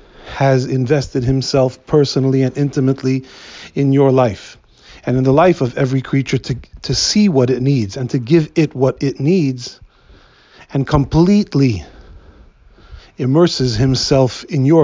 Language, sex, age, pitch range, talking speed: English, male, 40-59, 125-155 Hz, 140 wpm